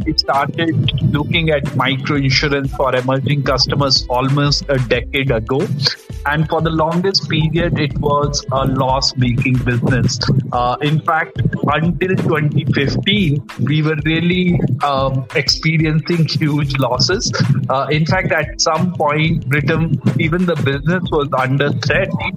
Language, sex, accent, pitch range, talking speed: English, male, Indian, 135-160 Hz, 130 wpm